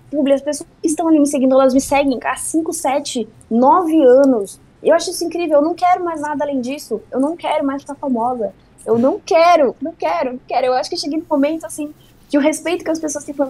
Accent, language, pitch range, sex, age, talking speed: Brazilian, Portuguese, 235-320 Hz, female, 10-29, 245 wpm